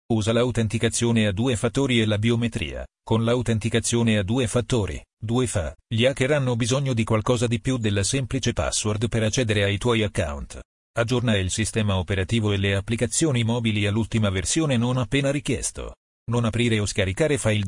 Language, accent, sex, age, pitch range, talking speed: Italian, native, male, 40-59, 105-120 Hz, 165 wpm